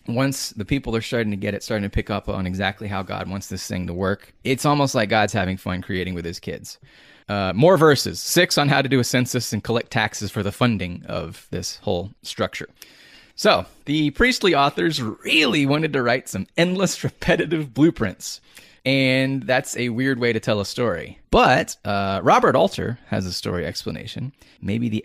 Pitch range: 100-135 Hz